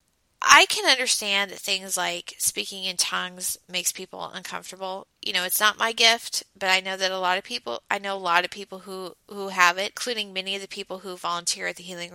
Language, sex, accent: English, female, American